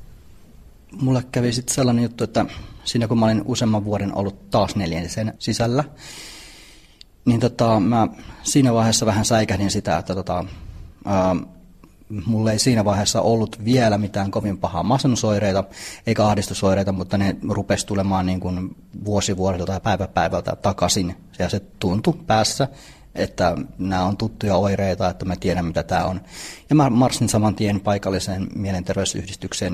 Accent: native